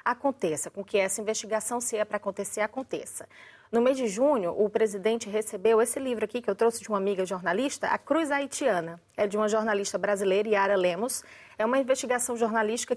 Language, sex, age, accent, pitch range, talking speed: Portuguese, female, 30-49, Brazilian, 210-265 Hz, 190 wpm